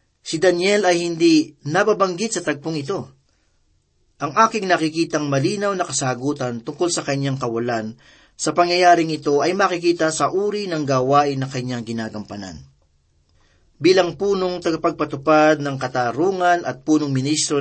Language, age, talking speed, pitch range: Filipino, 40-59, 130 wpm, 125-175 Hz